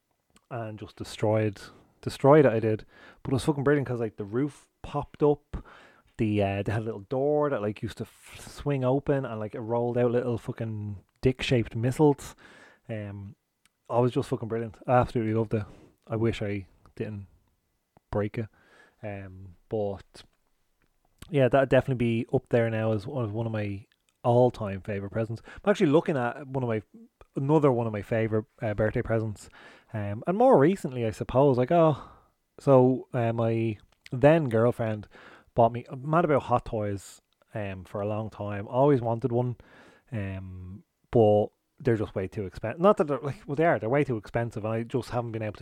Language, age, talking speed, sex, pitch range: English, 30-49, 185 wpm, male, 105-130 Hz